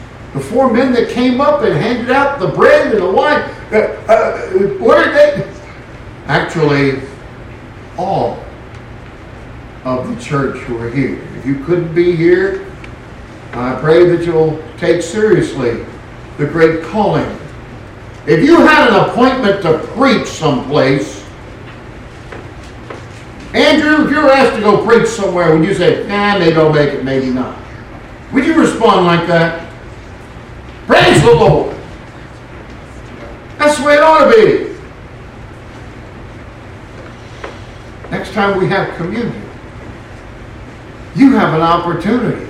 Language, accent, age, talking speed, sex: English, American, 50-69, 125 wpm, male